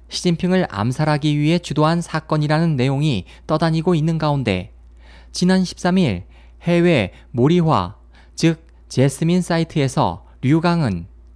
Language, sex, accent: Korean, male, native